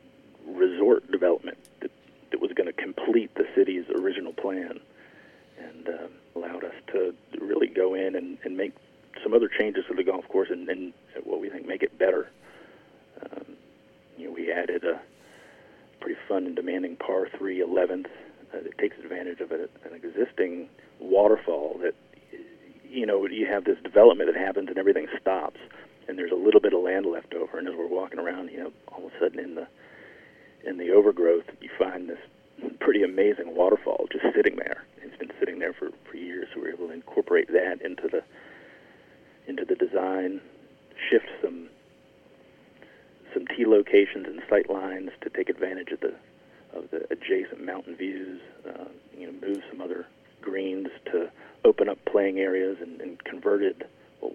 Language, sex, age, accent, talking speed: English, male, 40-59, American, 175 wpm